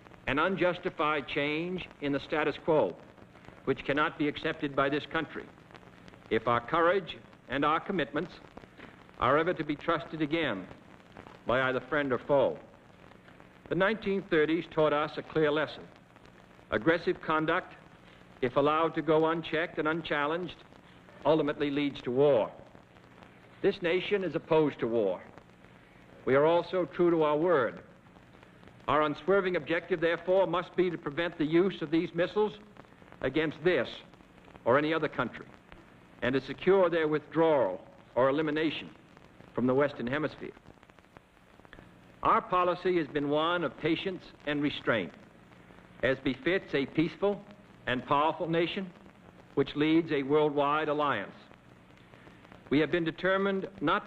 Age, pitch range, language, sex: 60-79, 140-170 Hz, English, male